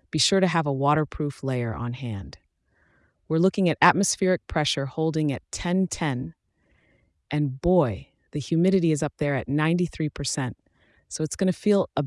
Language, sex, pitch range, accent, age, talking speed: English, female, 140-165 Hz, American, 30-49, 155 wpm